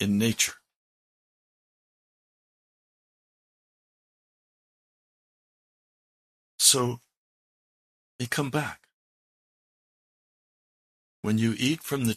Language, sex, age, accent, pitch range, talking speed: English, male, 60-79, American, 95-125 Hz, 55 wpm